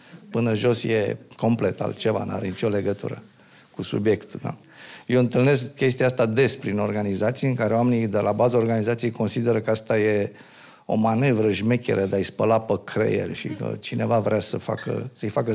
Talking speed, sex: 175 wpm, male